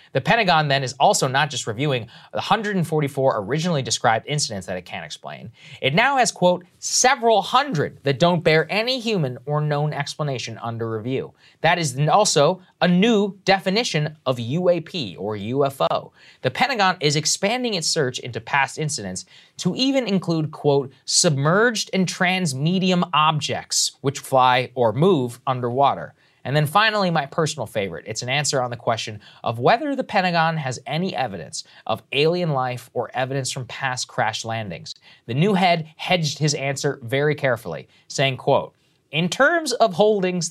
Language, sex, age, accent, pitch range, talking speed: English, male, 20-39, American, 130-180 Hz, 155 wpm